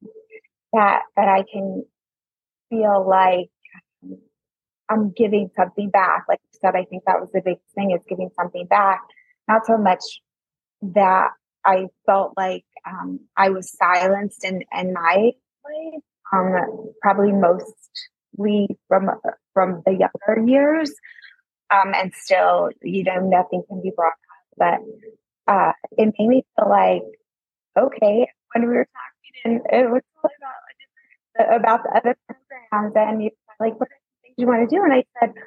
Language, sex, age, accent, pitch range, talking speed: English, female, 20-39, American, 195-255 Hz, 150 wpm